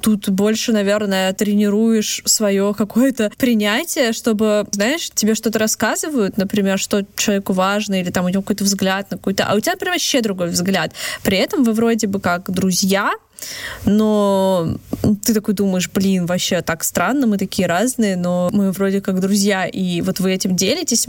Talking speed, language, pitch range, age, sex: 170 wpm, Russian, 190-225 Hz, 20-39, female